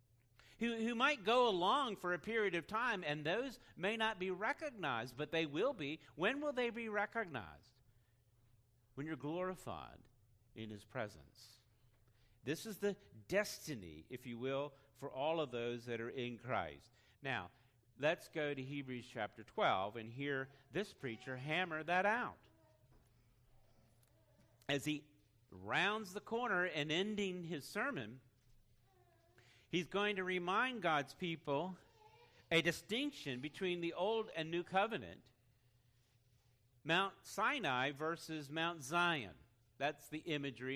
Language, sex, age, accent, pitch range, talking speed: English, male, 50-69, American, 120-175 Hz, 135 wpm